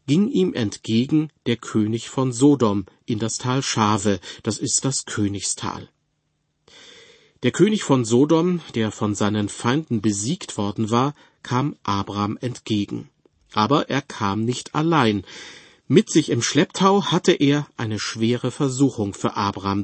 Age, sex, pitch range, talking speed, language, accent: 40-59, male, 110-145 Hz, 135 wpm, German, German